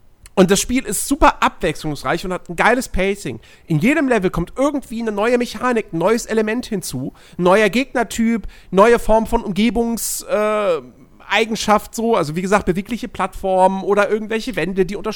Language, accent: German, German